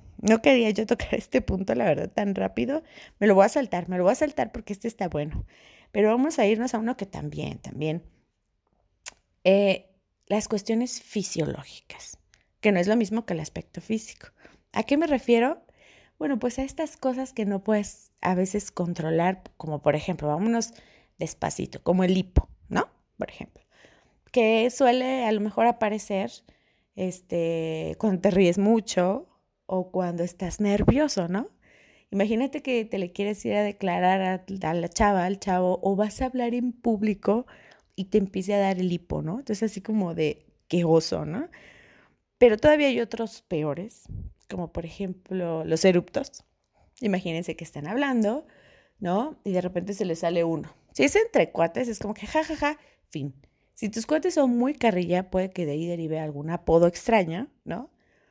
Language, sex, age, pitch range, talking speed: Spanish, female, 30-49, 180-235 Hz, 175 wpm